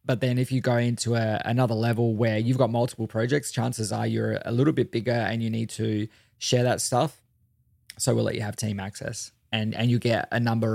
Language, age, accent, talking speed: English, 20-39, Australian, 225 wpm